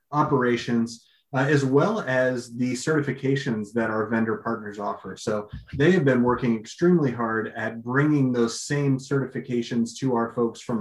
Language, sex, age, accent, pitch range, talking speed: English, male, 30-49, American, 115-140 Hz, 155 wpm